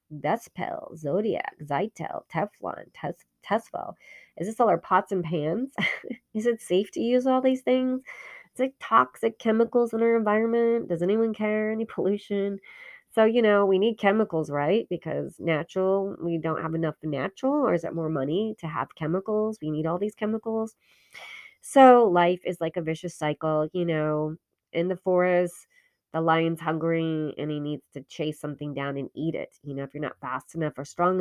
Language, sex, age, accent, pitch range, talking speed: English, female, 30-49, American, 165-220 Hz, 180 wpm